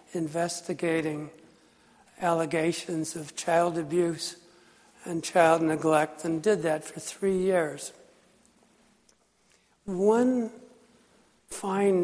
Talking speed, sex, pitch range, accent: 80 wpm, male, 165-195 Hz, American